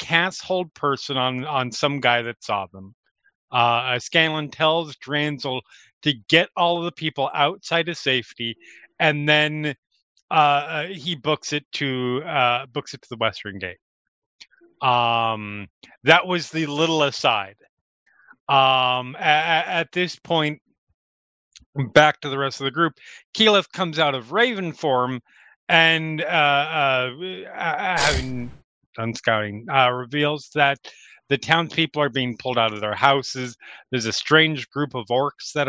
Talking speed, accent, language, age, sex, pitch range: 145 wpm, American, English, 30-49, male, 125-160 Hz